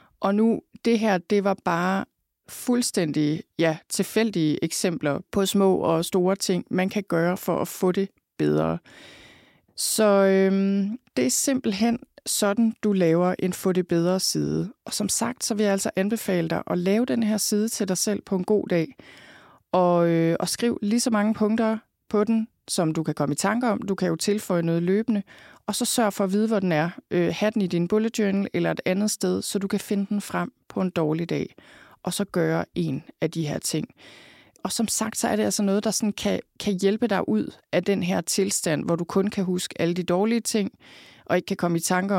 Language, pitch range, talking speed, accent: Danish, 170-210 Hz, 215 wpm, native